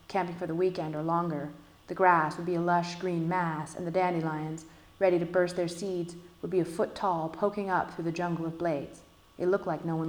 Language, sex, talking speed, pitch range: English, female, 230 wpm, 150-180 Hz